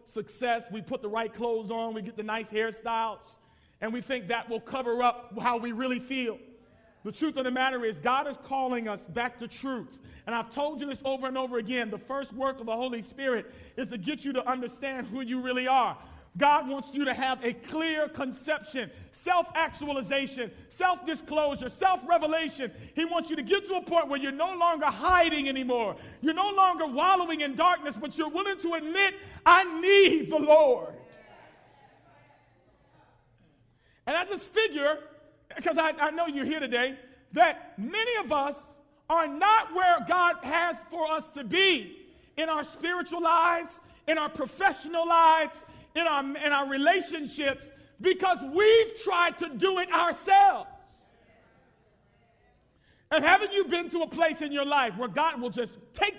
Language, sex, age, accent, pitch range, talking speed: English, male, 40-59, American, 255-345 Hz, 175 wpm